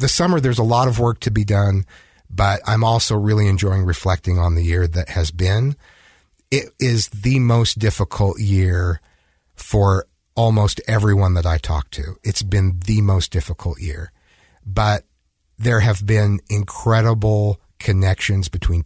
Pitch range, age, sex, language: 85-110 Hz, 50-69, male, English